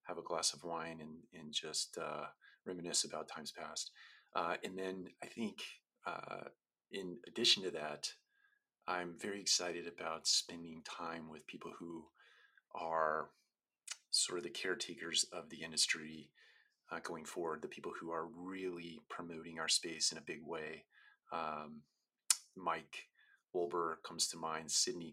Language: English